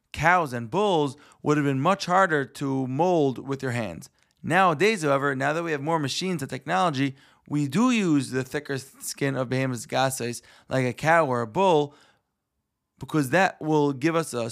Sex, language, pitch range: male, English, 130-165 Hz